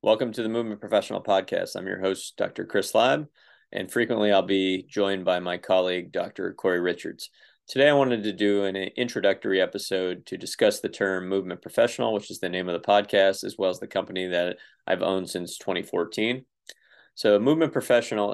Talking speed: 190 wpm